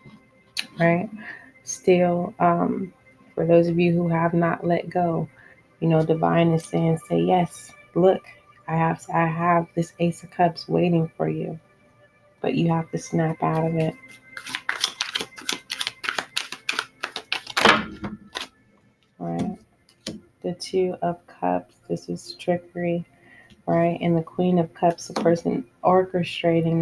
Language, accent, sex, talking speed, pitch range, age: English, American, female, 125 wpm, 160-175 Hz, 20-39